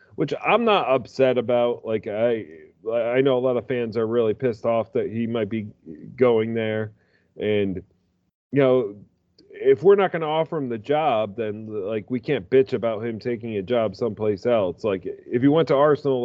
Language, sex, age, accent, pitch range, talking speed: English, male, 30-49, American, 105-135 Hz, 195 wpm